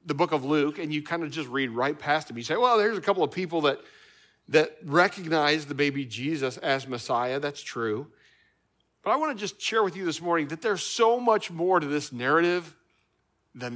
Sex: male